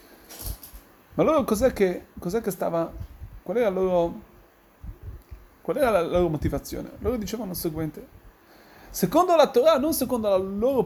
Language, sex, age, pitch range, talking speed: Italian, male, 30-49, 180-255 Hz, 145 wpm